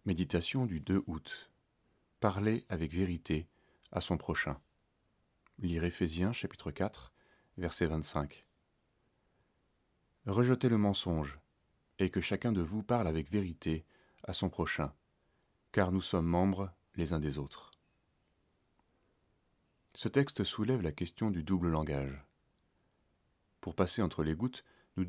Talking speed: 125 wpm